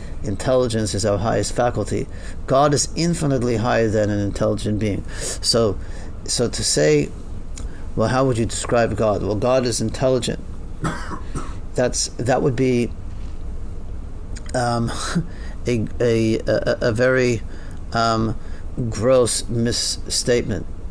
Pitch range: 90-120 Hz